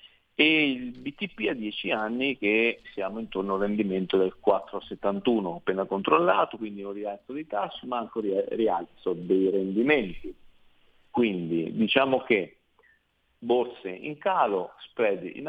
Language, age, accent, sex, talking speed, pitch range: Italian, 40-59, native, male, 130 wpm, 95-115 Hz